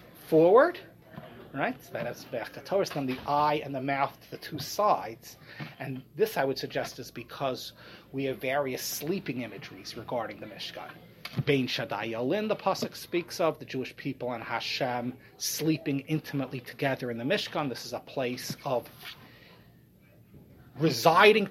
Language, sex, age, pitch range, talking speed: English, male, 30-49, 140-200 Hz, 140 wpm